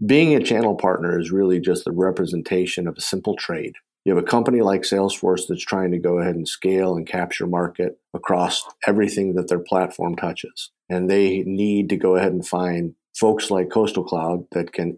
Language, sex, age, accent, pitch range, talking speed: English, male, 50-69, American, 90-100 Hz, 195 wpm